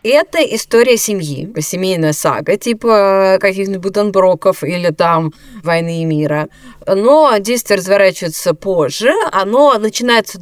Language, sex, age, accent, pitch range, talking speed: Russian, female, 20-39, native, 165-220 Hz, 110 wpm